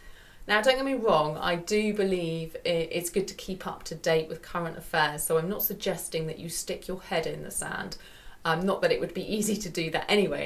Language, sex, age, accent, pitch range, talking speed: English, female, 30-49, British, 165-210 Hz, 235 wpm